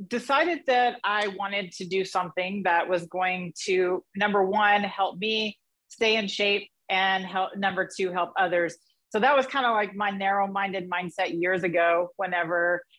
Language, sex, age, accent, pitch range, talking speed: English, female, 40-59, American, 185-215 Hz, 160 wpm